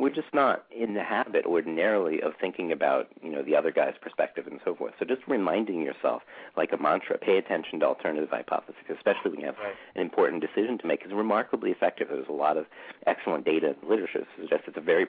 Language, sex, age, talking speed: English, male, 40-59, 225 wpm